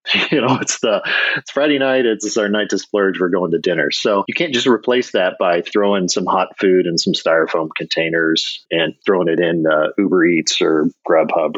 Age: 40-59